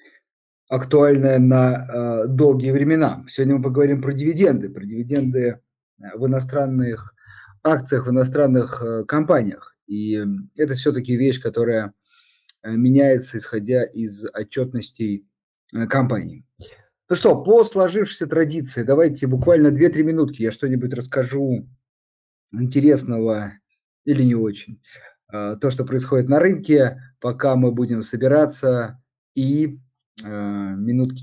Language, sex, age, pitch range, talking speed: Russian, male, 30-49, 115-145 Hz, 105 wpm